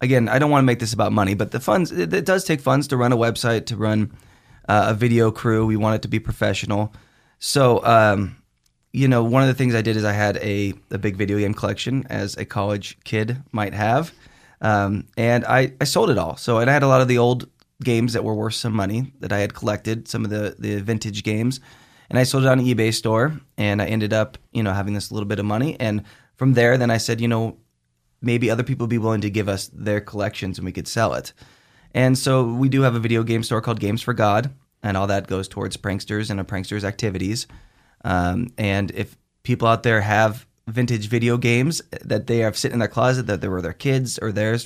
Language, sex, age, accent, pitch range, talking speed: English, male, 20-39, American, 105-125 Hz, 245 wpm